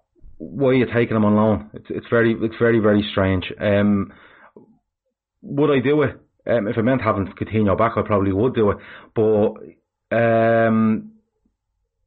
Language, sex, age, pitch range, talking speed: English, male, 30-49, 100-115 Hz, 165 wpm